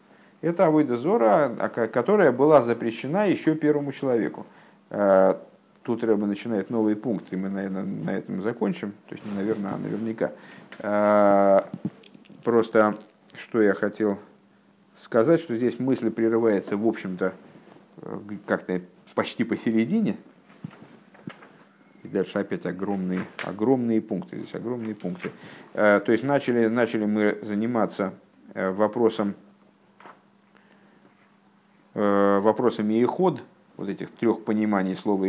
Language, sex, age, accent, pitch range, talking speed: Russian, male, 50-69, native, 105-125 Hz, 105 wpm